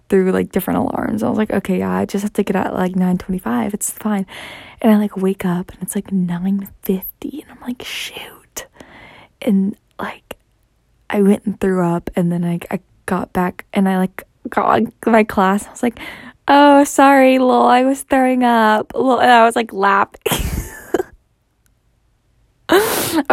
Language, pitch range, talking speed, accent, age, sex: English, 190-260 Hz, 185 wpm, American, 10-29, female